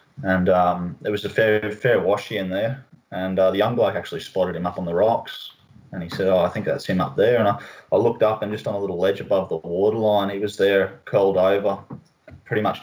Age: 20-39